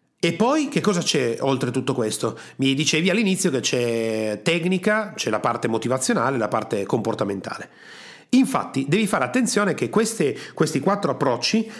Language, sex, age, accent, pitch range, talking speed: Italian, male, 40-59, native, 130-210 Hz, 155 wpm